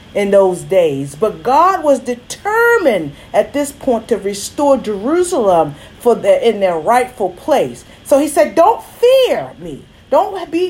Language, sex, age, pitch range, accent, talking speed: English, female, 40-59, 215-320 Hz, American, 150 wpm